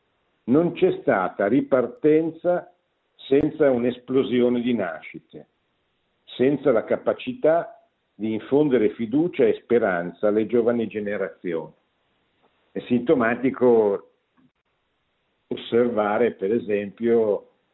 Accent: native